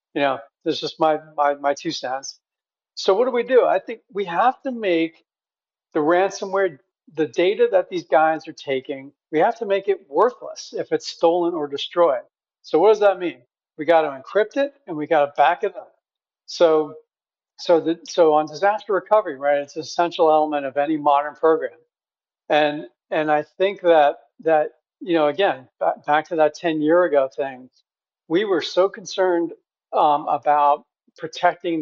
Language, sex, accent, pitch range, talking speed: English, male, American, 145-190 Hz, 185 wpm